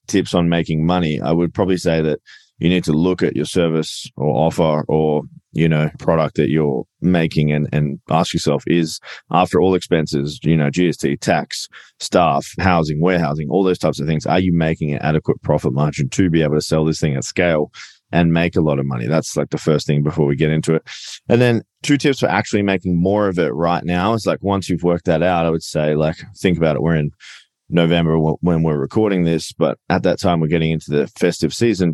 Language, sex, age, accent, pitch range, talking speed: English, male, 20-39, Australian, 75-90 Hz, 225 wpm